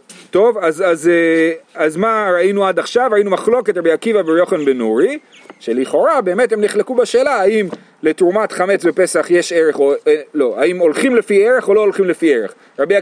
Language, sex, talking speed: Hebrew, male, 180 wpm